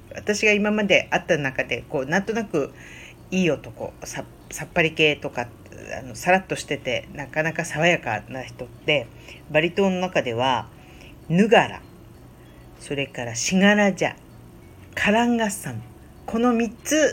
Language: Japanese